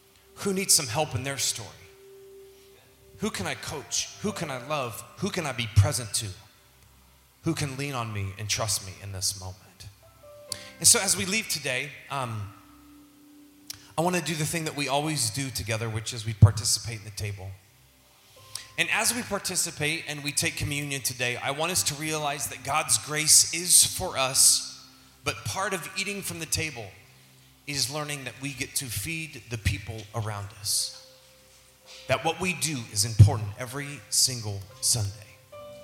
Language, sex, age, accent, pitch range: Japanese, male, 30-49, American, 105-145 Hz